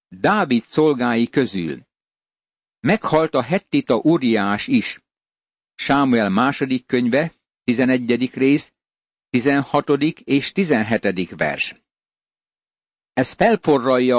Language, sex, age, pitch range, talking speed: Hungarian, male, 60-79, 125-145 Hz, 80 wpm